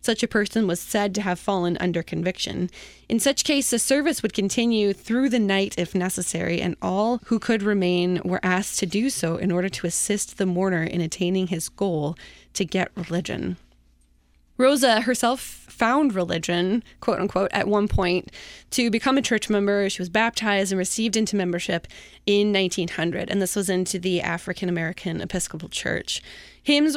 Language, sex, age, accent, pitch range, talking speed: English, female, 20-39, American, 175-220 Hz, 175 wpm